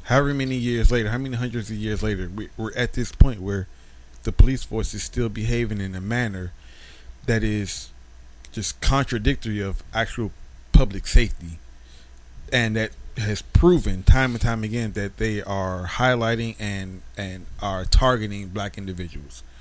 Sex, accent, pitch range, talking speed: male, American, 95-130 Hz, 155 wpm